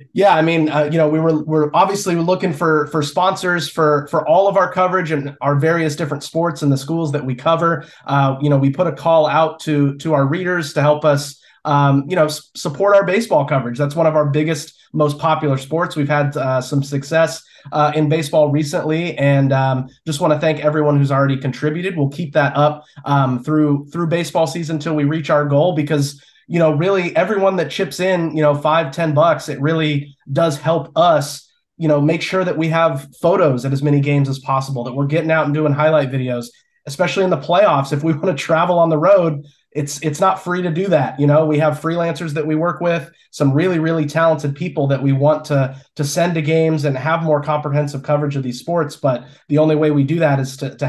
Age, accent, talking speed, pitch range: 20-39, American, 230 wpm, 145-165 Hz